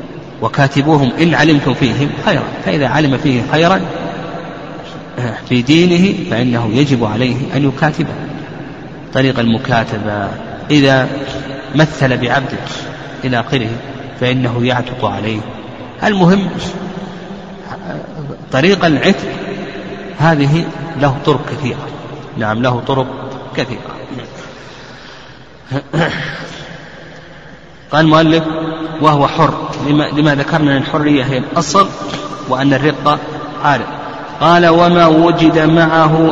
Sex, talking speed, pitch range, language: male, 90 wpm, 135-165 Hz, Arabic